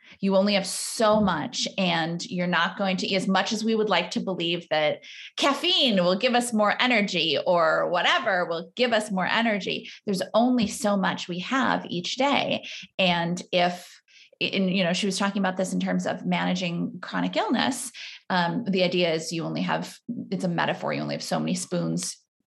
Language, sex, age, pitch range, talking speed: English, female, 20-39, 180-220 Hz, 190 wpm